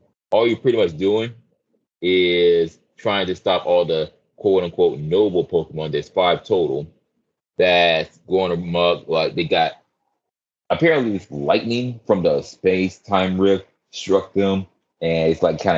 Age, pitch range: 30-49, 80-100 Hz